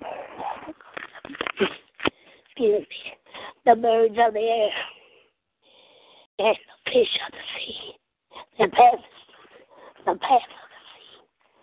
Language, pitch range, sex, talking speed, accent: English, 190-235 Hz, female, 90 wpm, American